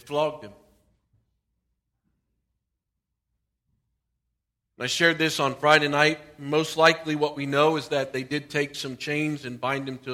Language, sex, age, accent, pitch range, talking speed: English, male, 40-59, American, 135-205 Hz, 140 wpm